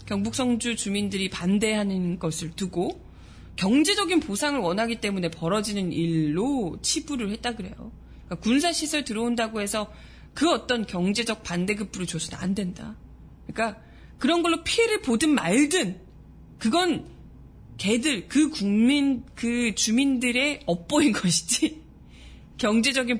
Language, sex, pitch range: Korean, female, 195-285 Hz